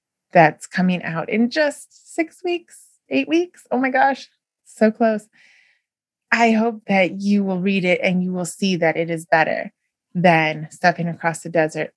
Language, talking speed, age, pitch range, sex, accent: English, 170 wpm, 20-39, 170-220 Hz, female, American